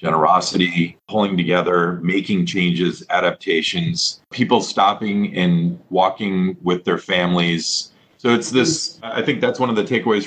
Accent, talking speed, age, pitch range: American, 135 wpm, 40-59, 85-115 Hz